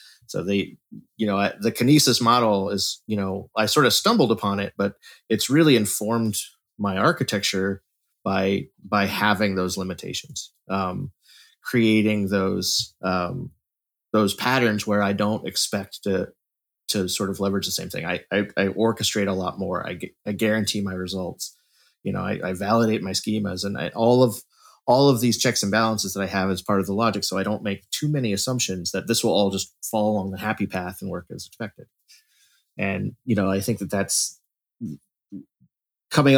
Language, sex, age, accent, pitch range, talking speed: English, male, 30-49, American, 95-110 Hz, 185 wpm